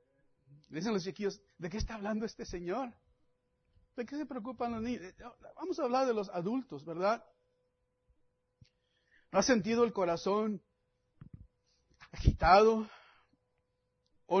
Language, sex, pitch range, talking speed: English, male, 165-265 Hz, 120 wpm